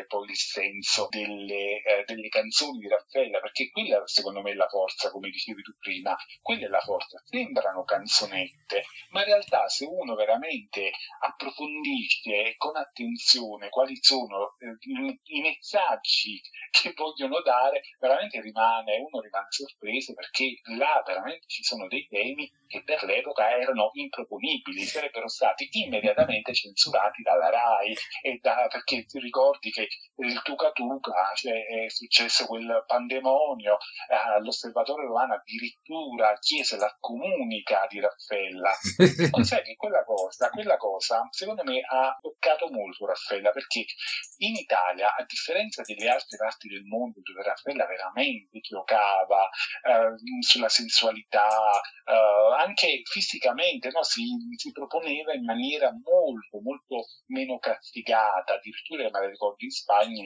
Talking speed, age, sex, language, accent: 130 wpm, 40-59, male, Italian, native